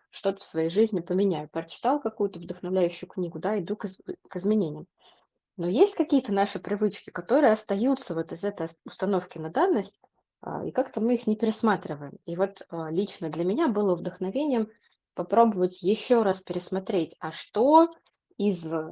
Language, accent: Russian, native